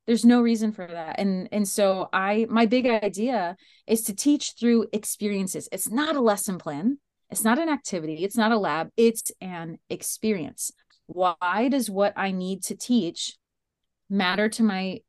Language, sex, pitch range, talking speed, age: English, female, 190-235 Hz, 170 wpm, 30-49